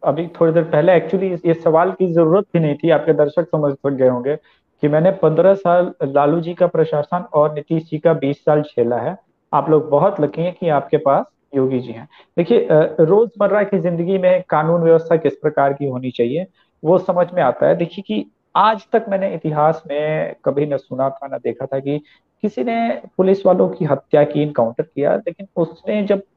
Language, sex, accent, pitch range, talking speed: English, male, Indian, 145-190 Hz, 175 wpm